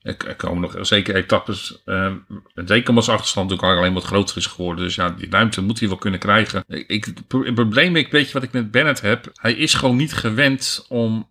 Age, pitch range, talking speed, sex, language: 50-69, 105-130 Hz, 230 wpm, male, Dutch